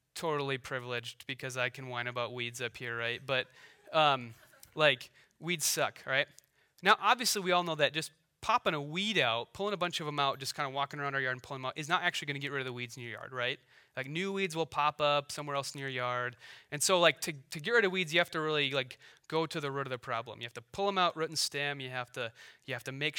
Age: 30-49